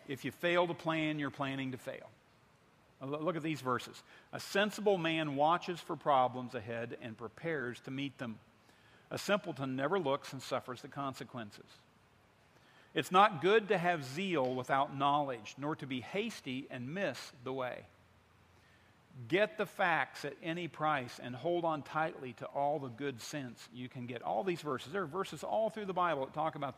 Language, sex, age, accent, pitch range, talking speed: English, male, 50-69, American, 130-175 Hz, 180 wpm